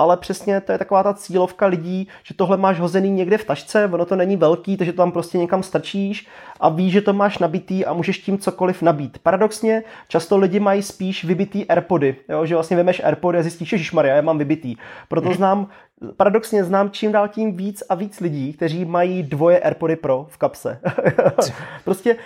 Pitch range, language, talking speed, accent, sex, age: 160-195 Hz, Czech, 200 wpm, native, male, 20-39